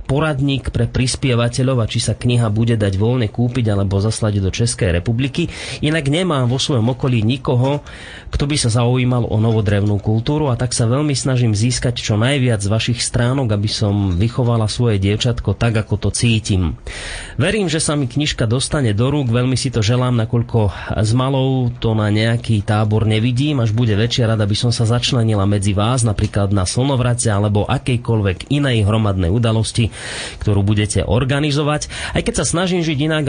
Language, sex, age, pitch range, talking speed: Slovak, male, 30-49, 110-130 Hz, 170 wpm